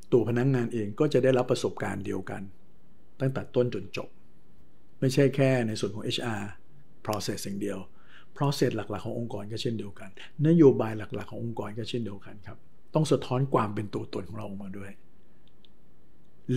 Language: Thai